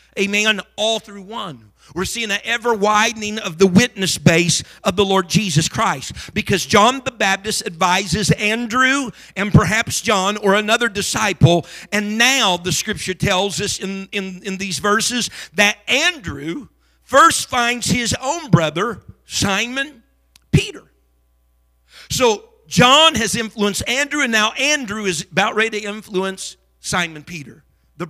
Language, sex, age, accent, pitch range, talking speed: English, male, 50-69, American, 175-215 Hz, 140 wpm